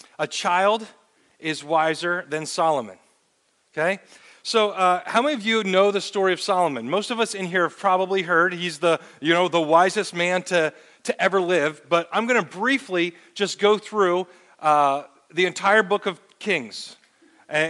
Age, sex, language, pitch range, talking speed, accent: 40-59, male, English, 165-200 Hz, 175 wpm, American